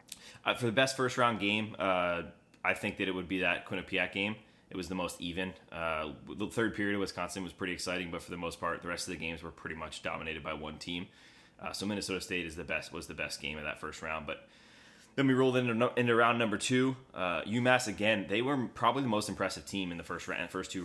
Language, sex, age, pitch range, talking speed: English, male, 20-39, 85-110 Hz, 250 wpm